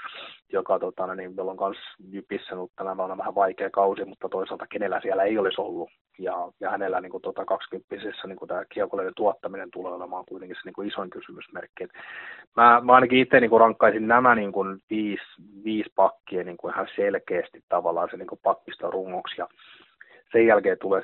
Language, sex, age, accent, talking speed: Finnish, male, 30-49, native, 170 wpm